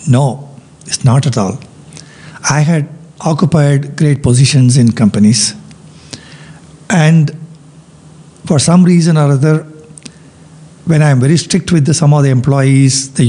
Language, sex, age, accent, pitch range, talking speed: English, male, 60-79, Indian, 130-155 Hz, 130 wpm